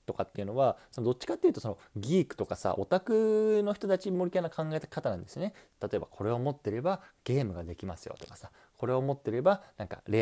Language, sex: Japanese, male